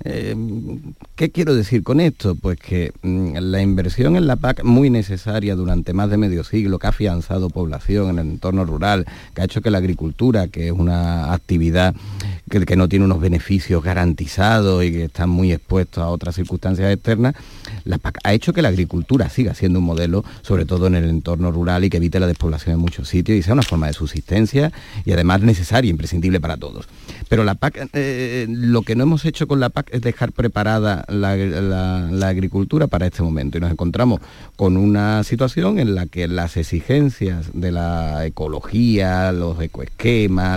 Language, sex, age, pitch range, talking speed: Spanish, male, 40-59, 90-115 Hz, 190 wpm